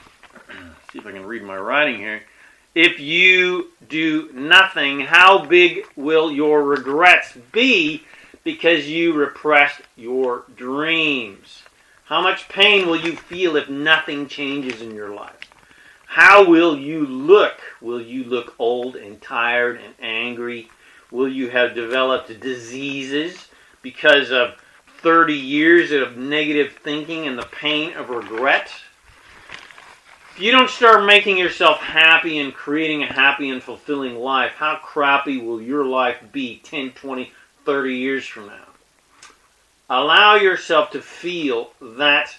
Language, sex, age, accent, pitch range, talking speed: English, male, 40-59, American, 135-175 Hz, 135 wpm